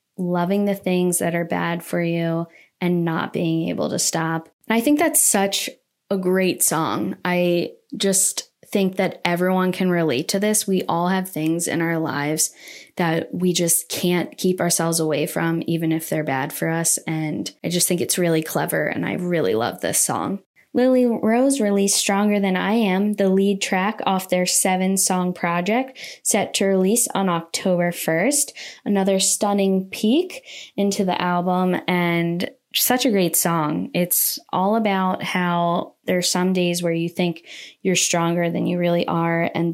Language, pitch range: English, 170-200 Hz